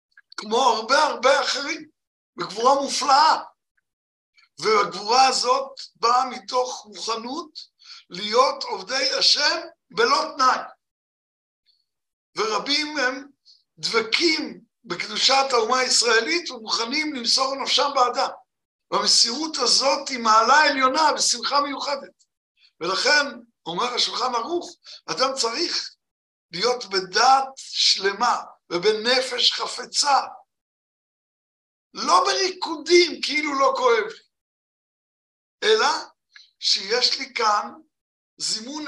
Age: 60-79